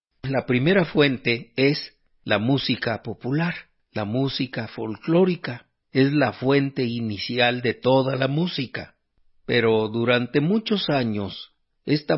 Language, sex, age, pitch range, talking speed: Spanish, male, 50-69, 100-135 Hz, 115 wpm